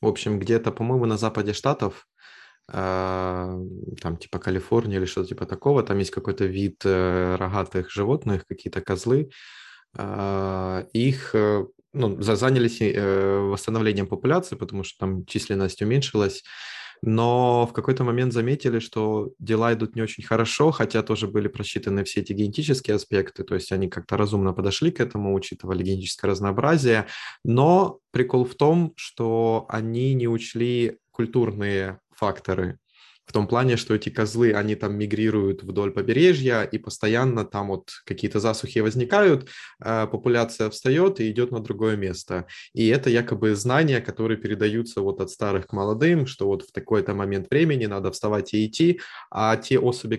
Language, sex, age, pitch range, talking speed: Ukrainian, male, 20-39, 100-120 Hz, 145 wpm